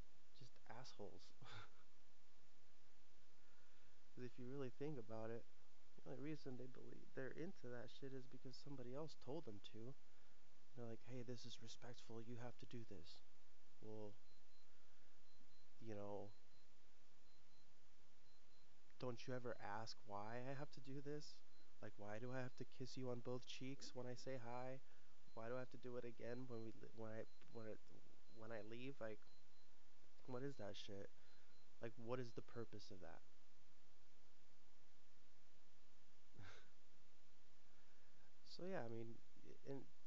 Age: 20-39